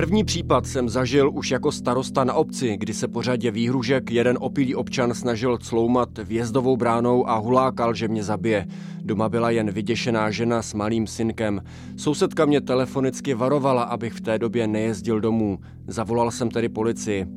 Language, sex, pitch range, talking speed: Czech, male, 105-130 Hz, 165 wpm